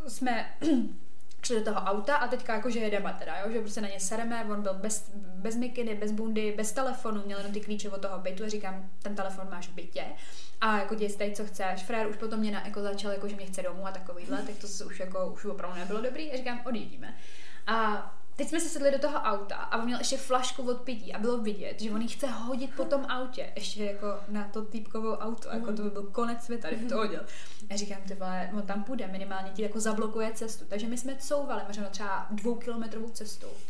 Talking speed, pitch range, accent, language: 230 wpm, 200-245 Hz, native, Czech